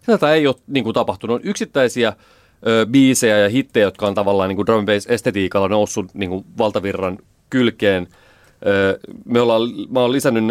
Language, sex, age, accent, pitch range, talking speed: Finnish, male, 30-49, native, 100-120 Hz, 160 wpm